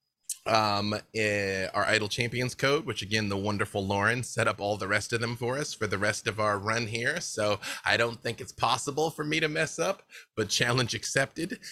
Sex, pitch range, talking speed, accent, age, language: male, 105-130 Hz, 210 wpm, American, 30-49, English